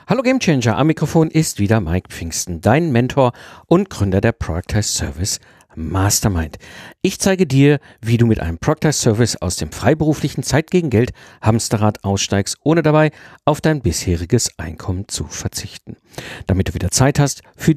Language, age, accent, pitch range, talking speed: German, 50-69, German, 105-150 Hz, 160 wpm